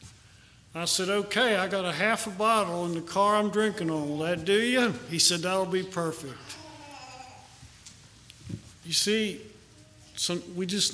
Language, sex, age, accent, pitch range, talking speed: English, male, 50-69, American, 135-195 Hz, 155 wpm